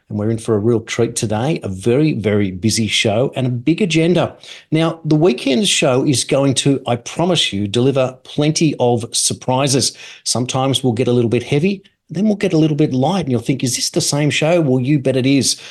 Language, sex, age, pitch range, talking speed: English, male, 40-59, 115-150 Hz, 220 wpm